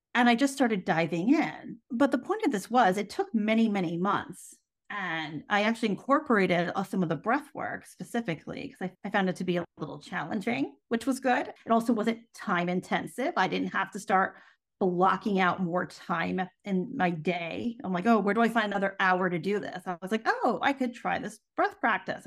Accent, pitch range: American, 185-255 Hz